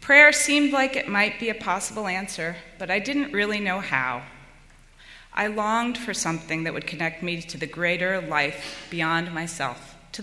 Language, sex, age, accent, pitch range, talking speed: English, female, 30-49, American, 175-215 Hz, 175 wpm